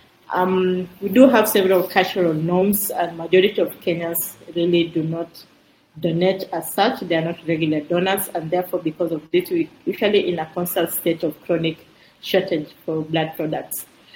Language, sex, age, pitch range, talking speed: English, female, 30-49, 160-180 Hz, 165 wpm